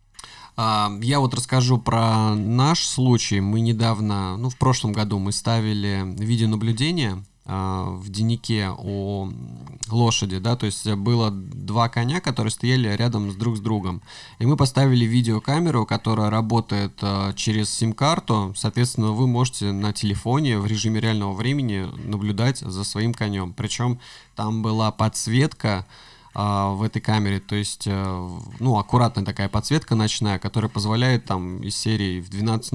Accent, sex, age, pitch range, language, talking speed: native, male, 20-39, 100-120 Hz, Russian, 135 wpm